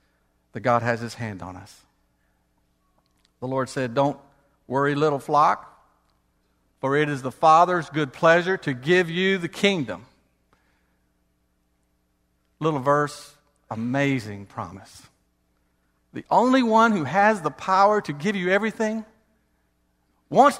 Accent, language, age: American, English, 50-69